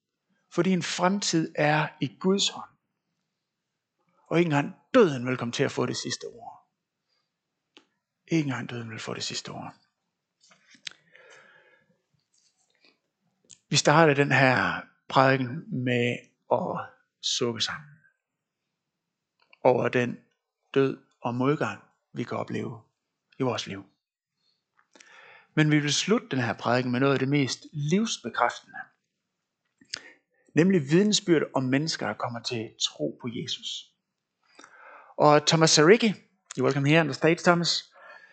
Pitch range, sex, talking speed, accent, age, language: 135-180 Hz, male, 120 wpm, native, 60-79, Danish